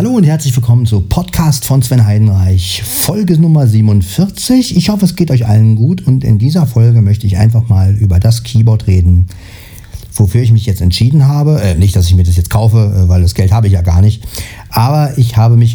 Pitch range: 100-120 Hz